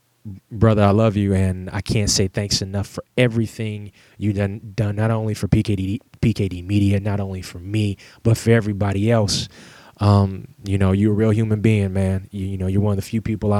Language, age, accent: English, 20-39, American